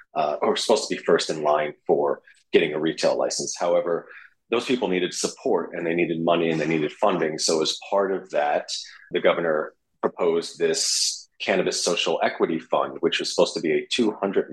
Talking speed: 190 wpm